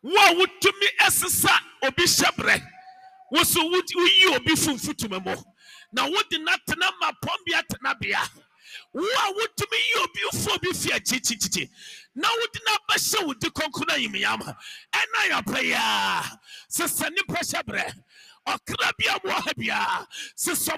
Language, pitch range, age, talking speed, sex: English, 280-390 Hz, 50-69, 150 wpm, male